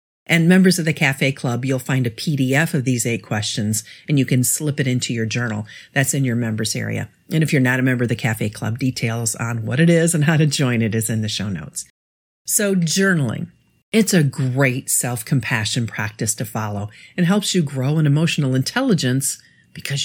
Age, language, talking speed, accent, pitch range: 50-69, English, 210 wpm, American, 120-170 Hz